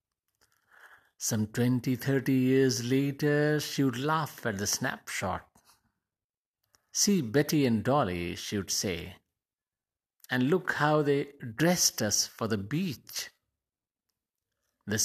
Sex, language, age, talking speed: male, English, 50-69, 110 wpm